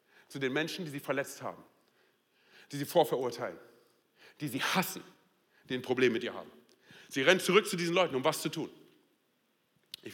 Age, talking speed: 40-59, 180 wpm